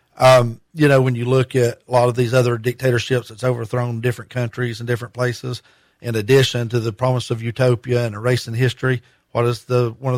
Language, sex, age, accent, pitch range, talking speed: English, male, 40-59, American, 115-135 Hz, 220 wpm